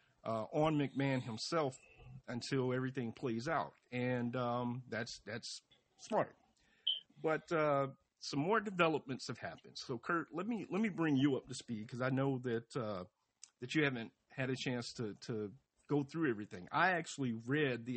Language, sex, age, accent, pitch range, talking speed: English, male, 50-69, American, 120-145 Hz, 170 wpm